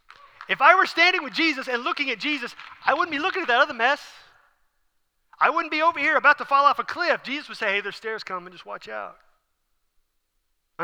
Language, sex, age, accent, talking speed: English, male, 30-49, American, 220 wpm